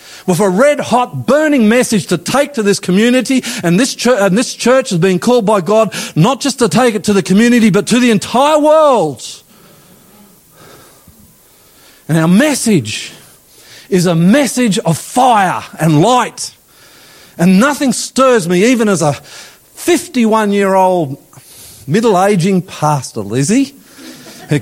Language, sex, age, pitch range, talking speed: English, male, 40-59, 160-235 Hz, 135 wpm